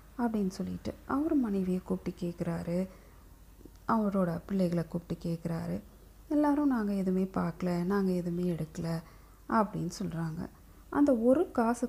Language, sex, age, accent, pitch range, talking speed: Tamil, female, 30-49, native, 175-235 Hz, 110 wpm